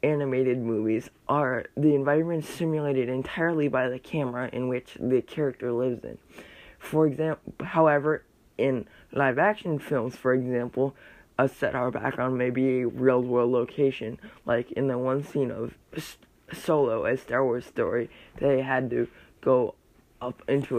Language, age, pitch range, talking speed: English, 20-39, 125-155 Hz, 145 wpm